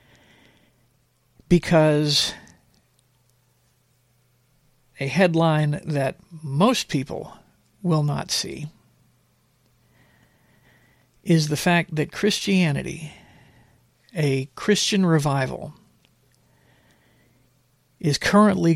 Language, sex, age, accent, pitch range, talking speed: English, male, 50-69, American, 125-170 Hz, 60 wpm